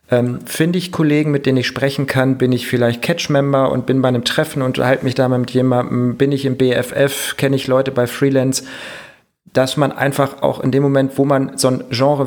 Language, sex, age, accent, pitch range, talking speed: German, male, 40-59, German, 120-140 Hz, 220 wpm